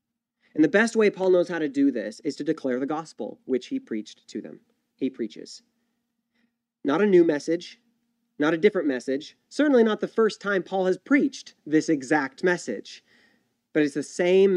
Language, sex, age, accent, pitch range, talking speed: English, male, 30-49, American, 130-175 Hz, 185 wpm